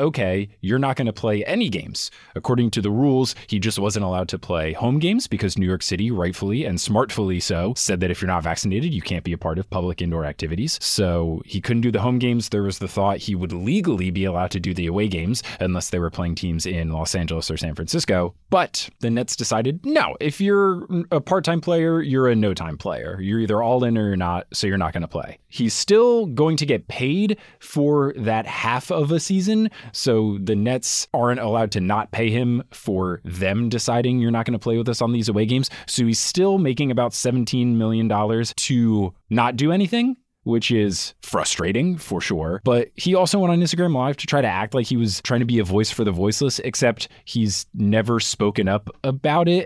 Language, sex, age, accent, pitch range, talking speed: English, male, 20-39, American, 100-125 Hz, 220 wpm